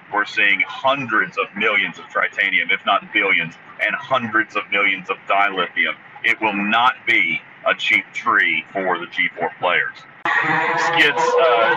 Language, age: English, 40-59